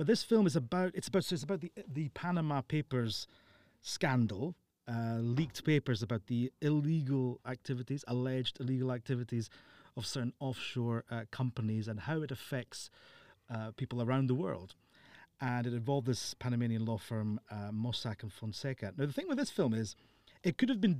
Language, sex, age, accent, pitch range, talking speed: English, male, 30-49, British, 110-145 Hz, 175 wpm